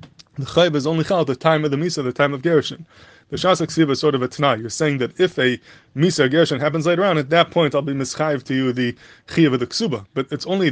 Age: 20-39